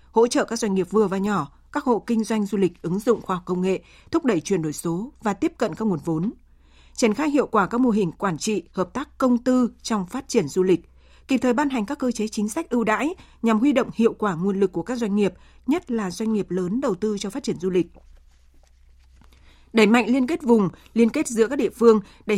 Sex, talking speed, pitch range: female, 255 wpm, 185-240 Hz